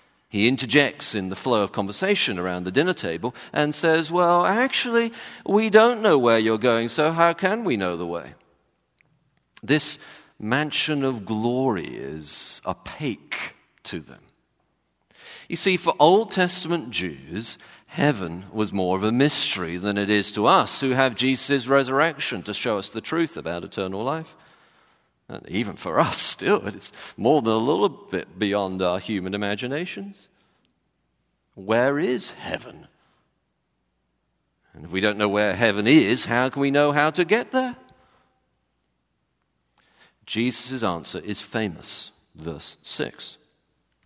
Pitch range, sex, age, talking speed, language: 95-145 Hz, male, 50-69, 145 wpm, English